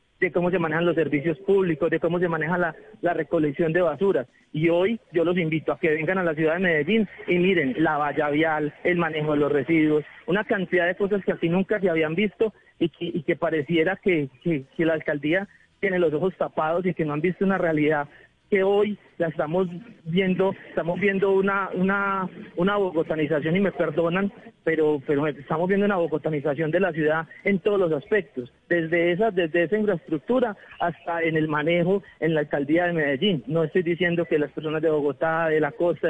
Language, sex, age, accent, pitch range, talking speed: Spanish, male, 40-59, Colombian, 155-185 Hz, 200 wpm